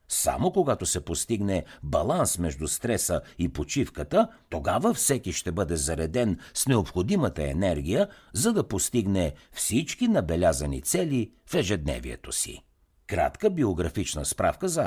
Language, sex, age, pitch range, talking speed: Bulgarian, male, 60-79, 85-125 Hz, 120 wpm